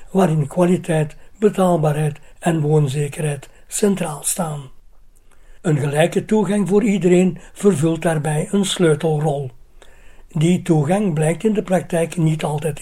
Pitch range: 155-185 Hz